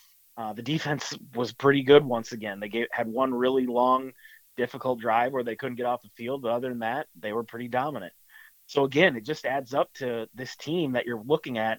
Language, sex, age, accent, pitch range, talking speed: English, male, 30-49, American, 120-140 Hz, 225 wpm